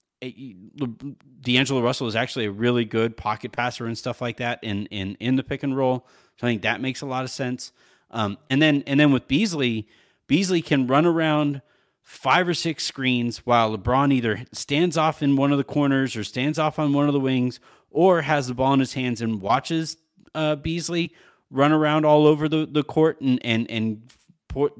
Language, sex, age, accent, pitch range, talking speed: English, male, 30-49, American, 115-150 Hz, 205 wpm